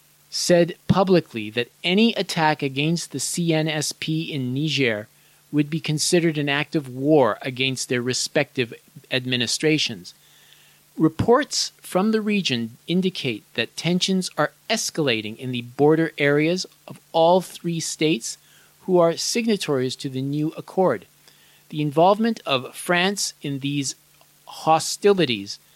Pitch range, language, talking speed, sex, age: 130-170 Hz, English, 120 wpm, male, 40-59